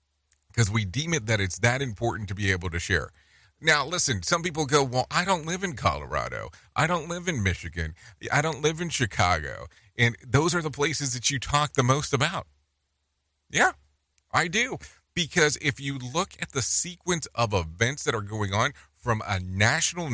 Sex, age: male, 40-59